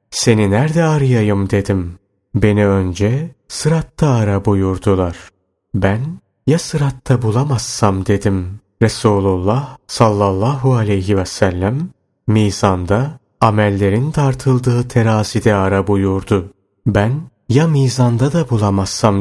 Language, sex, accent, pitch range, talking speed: Turkish, male, native, 100-125 Hz, 95 wpm